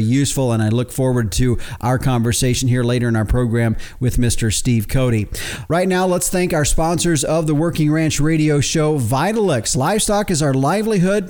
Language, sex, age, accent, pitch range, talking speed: English, male, 50-69, American, 125-155 Hz, 180 wpm